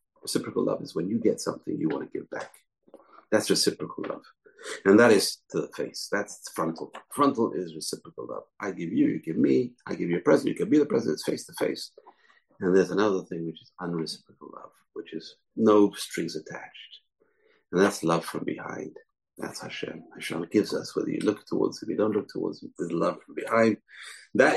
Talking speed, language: 210 wpm, English